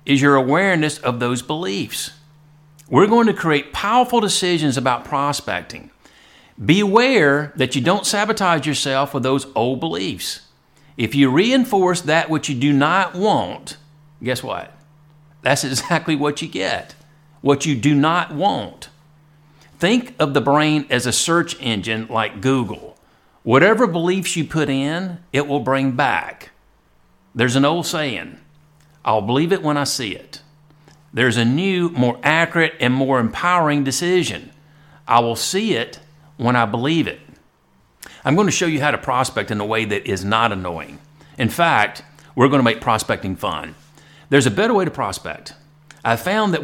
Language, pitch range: English, 130-160 Hz